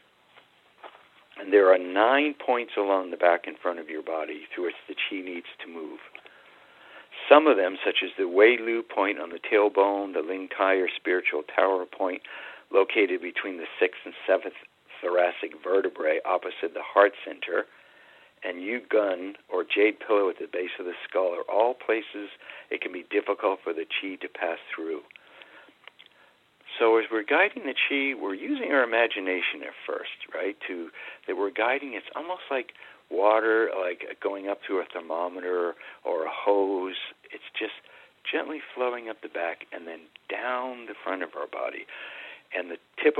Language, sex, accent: English, male, American